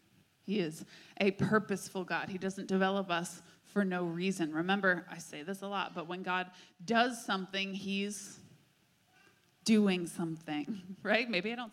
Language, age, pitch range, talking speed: English, 30-49, 175-215 Hz, 155 wpm